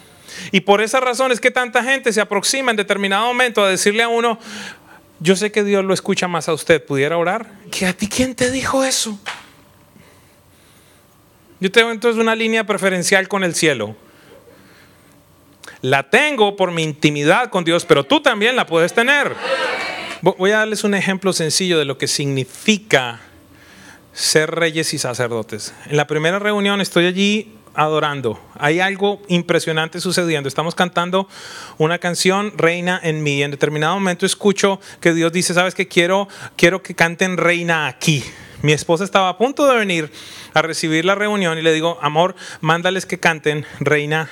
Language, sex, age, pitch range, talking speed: English, male, 30-49, 160-210 Hz, 170 wpm